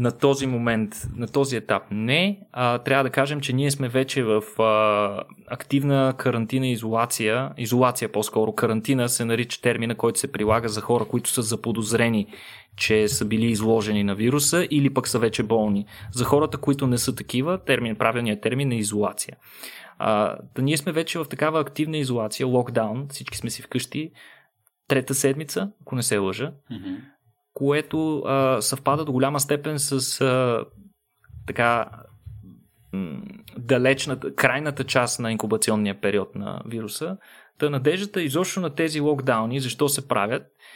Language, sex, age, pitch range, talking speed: Bulgarian, male, 20-39, 115-145 Hz, 150 wpm